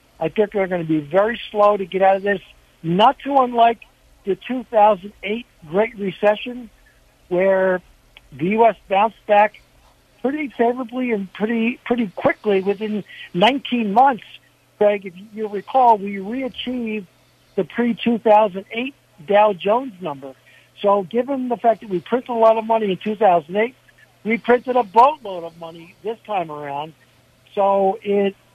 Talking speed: 145 wpm